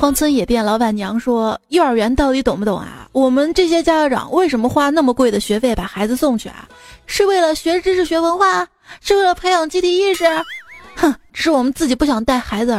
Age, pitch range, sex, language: 30-49, 235-310 Hz, female, Chinese